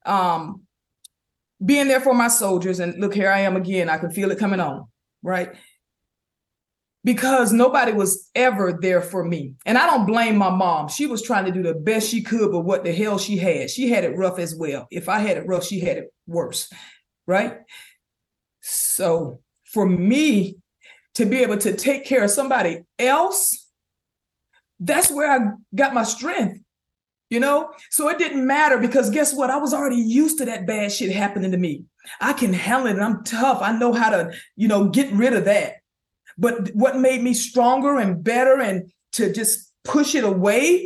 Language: English